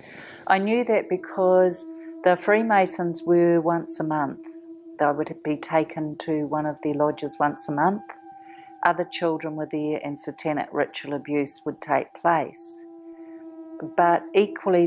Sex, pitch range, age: female, 160-200 Hz, 50-69